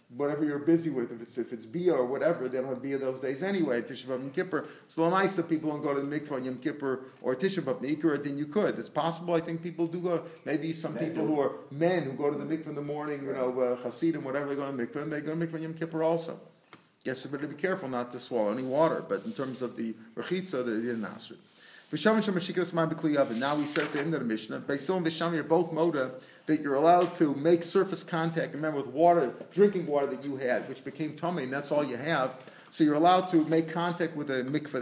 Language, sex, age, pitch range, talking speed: English, male, 40-59, 140-170 Hz, 255 wpm